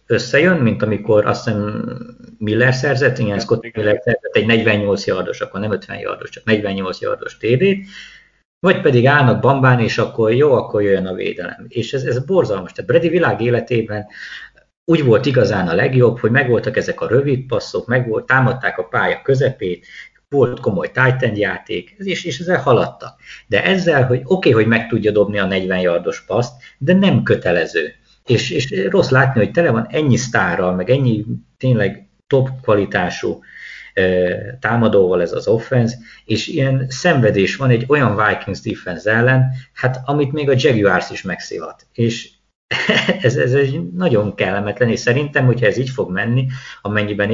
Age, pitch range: 50-69, 105-135 Hz